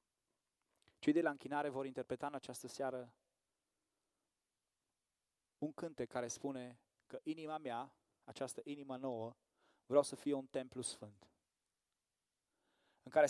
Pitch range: 130-170 Hz